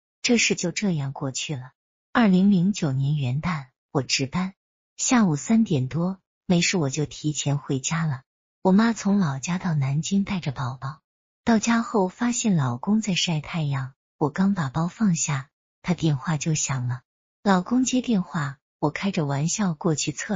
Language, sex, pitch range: Chinese, female, 145-195 Hz